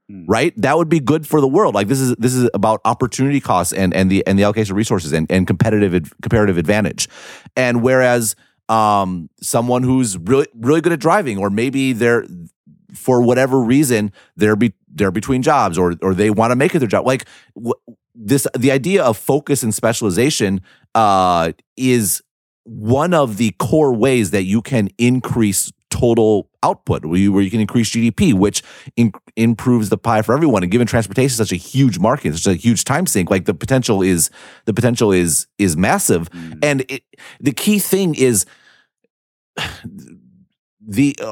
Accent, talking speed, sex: American, 180 wpm, male